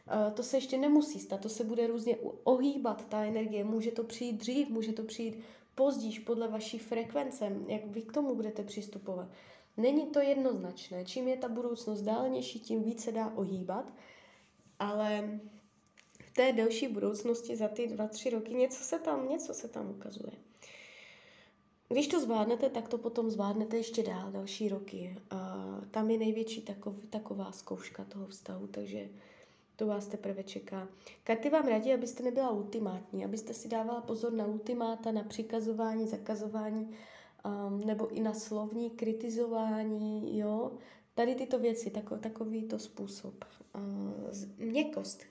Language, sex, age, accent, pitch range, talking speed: Czech, female, 20-39, native, 210-245 Hz, 150 wpm